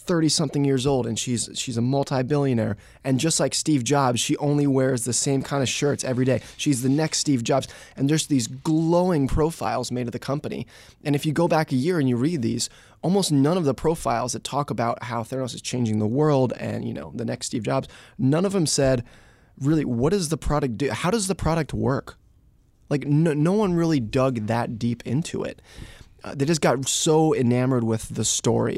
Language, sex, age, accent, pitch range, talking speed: English, male, 20-39, American, 120-145 Hz, 215 wpm